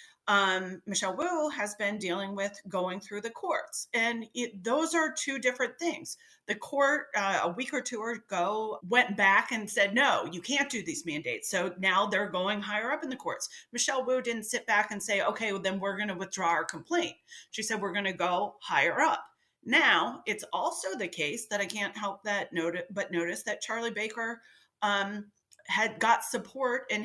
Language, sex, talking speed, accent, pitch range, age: English, female, 200 wpm, American, 190-235 Hz, 40-59